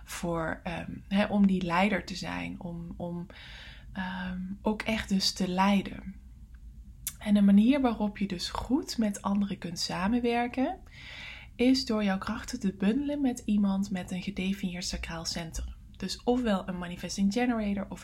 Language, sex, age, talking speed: English, female, 20-39, 140 wpm